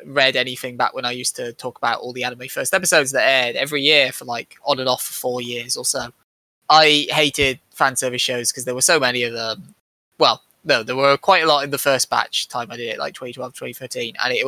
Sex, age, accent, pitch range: male, 10-29, British, 125-160 Hz